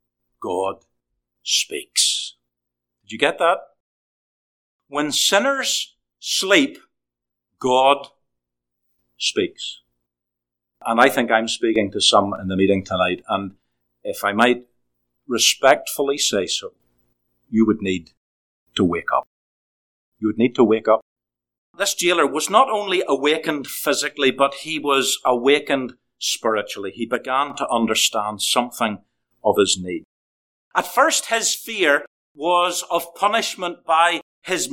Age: 50-69